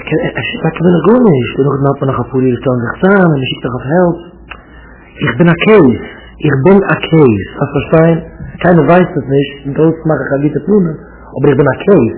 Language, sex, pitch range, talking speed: English, male, 115-170 Hz, 155 wpm